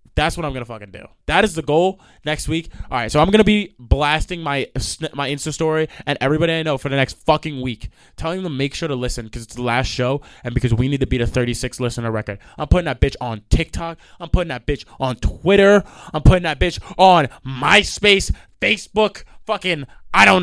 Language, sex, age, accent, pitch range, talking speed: English, male, 20-39, American, 110-165 Hz, 225 wpm